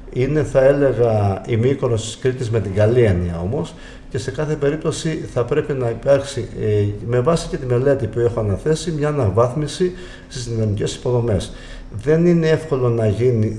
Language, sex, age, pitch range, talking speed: Greek, male, 50-69, 105-135 Hz, 165 wpm